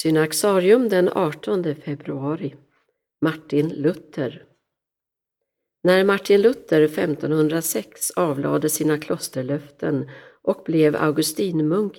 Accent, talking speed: native, 80 wpm